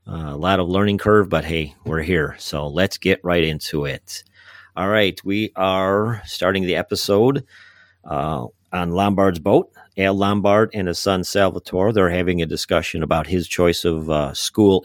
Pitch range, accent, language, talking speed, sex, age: 80-95 Hz, American, English, 175 wpm, male, 40-59